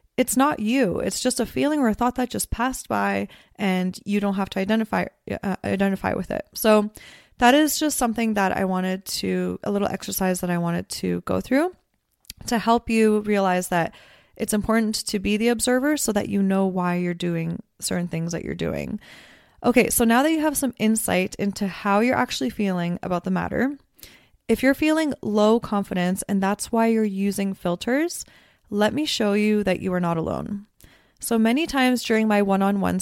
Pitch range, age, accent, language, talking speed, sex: 190-235 Hz, 20-39, American, English, 195 wpm, female